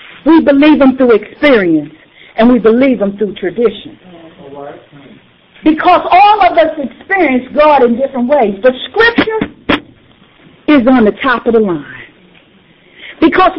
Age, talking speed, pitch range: 50-69, 135 wpm, 205-315 Hz